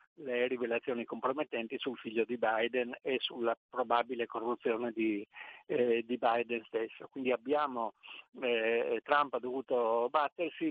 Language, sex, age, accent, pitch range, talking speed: Italian, male, 50-69, native, 115-150 Hz, 130 wpm